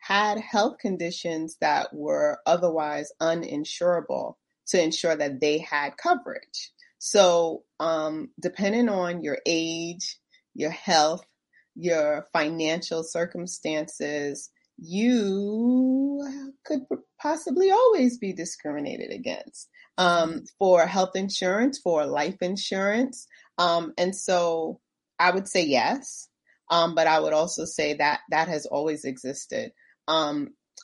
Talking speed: 110 wpm